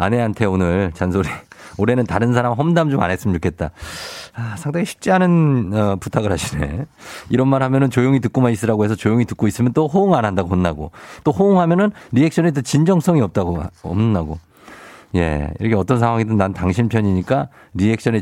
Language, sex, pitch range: Korean, male, 95-140 Hz